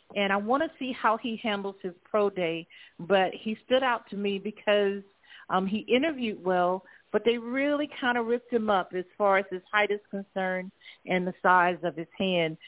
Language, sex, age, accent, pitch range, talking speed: English, female, 50-69, American, 180-215 Hz, 205 wpm